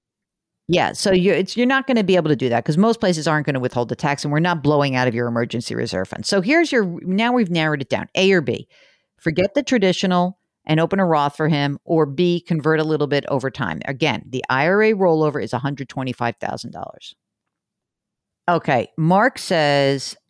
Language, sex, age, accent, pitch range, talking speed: English, female, 50-69, American, 145-195 Hz, 200 wpm